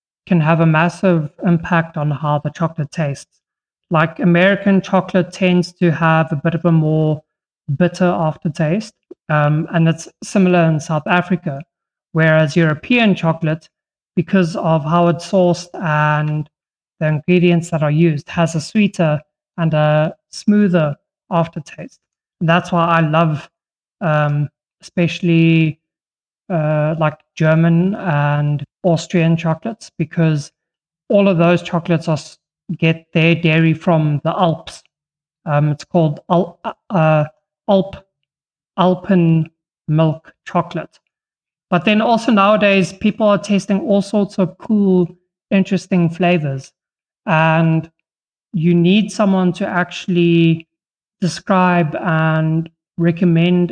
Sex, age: male, 30-49